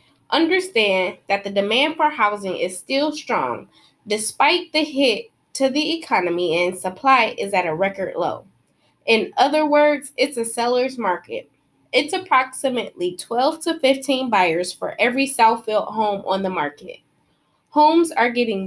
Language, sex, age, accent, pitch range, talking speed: English, female, 20-39, American, 195-280 Hz, 145 wpm